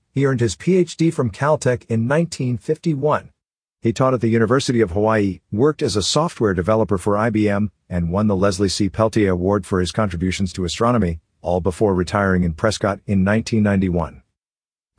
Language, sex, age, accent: English, male, 50-69, American